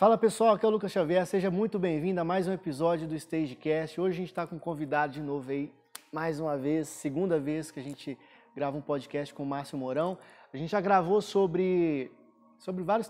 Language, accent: Portuguese, Brazilian